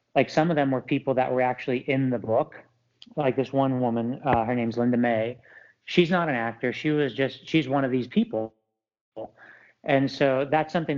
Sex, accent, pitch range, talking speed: male, American, 120-140 Hz, 200 wpm